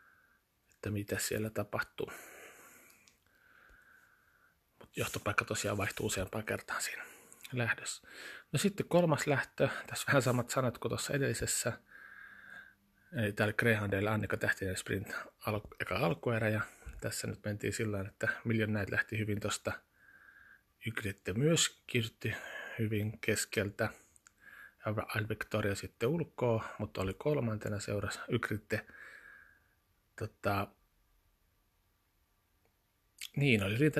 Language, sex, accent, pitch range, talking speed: Finnish, male, native, 100-120 Hz, 105 wpm